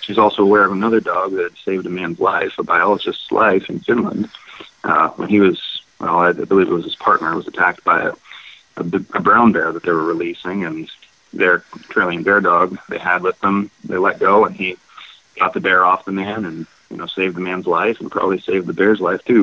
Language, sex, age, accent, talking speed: English, male, 30-49, American, 225 wpm